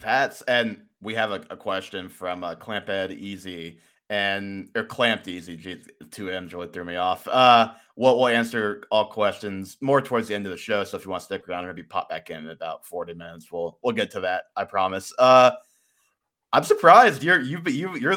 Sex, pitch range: male, 100-130 Hz